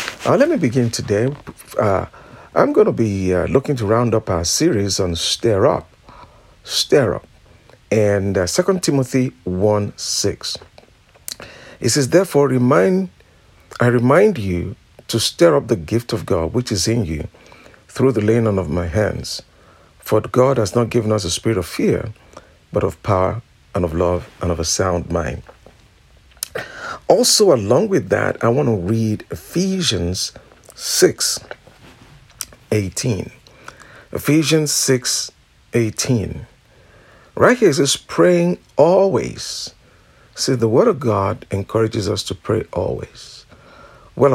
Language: English